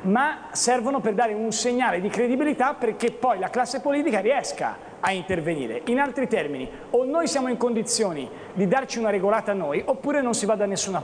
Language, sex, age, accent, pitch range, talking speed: Italian, male, 40-59, native, 215-270 Hz, 195 wpm